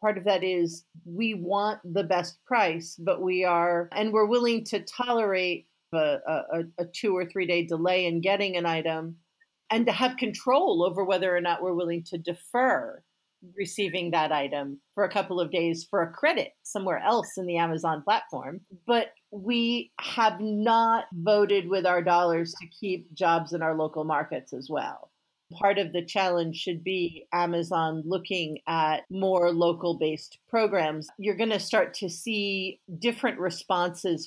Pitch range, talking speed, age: 170-200 Hz, 165 wpm, 40-59